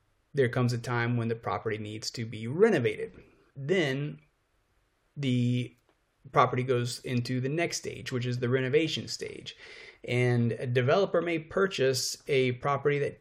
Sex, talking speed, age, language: male, 145 wpm, 30-49, English